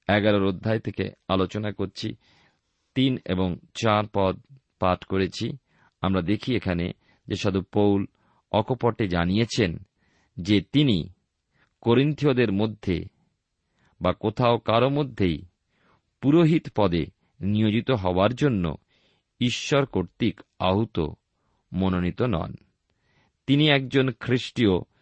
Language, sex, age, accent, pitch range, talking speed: Bengali, male, 50-69, native, 95-130 Hz, 95 wpm